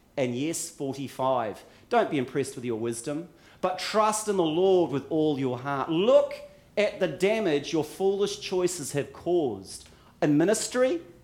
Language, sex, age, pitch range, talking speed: English, male, 40-59, 140-210 Hz, 155 wpm